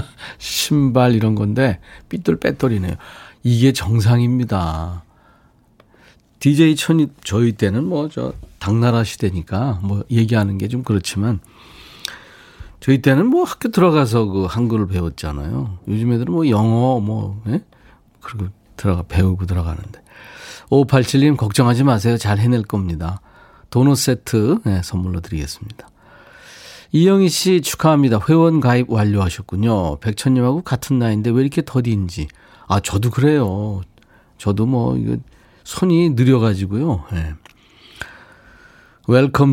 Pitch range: 95-135 Hz